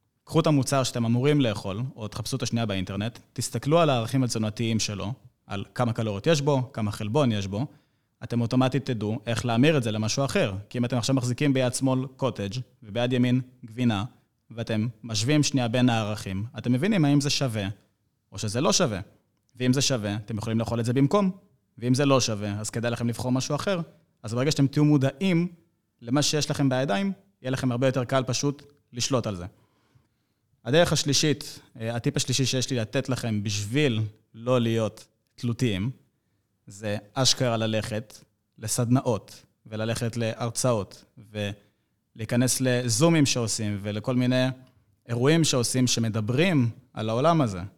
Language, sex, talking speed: Hebrew, male, 135 wpm